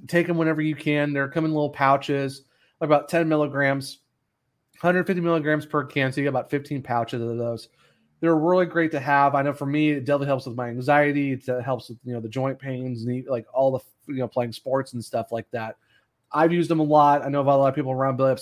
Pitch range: 125-145 Hz